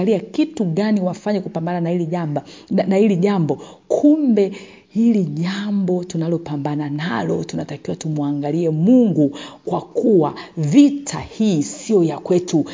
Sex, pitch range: female, 160-205 Hz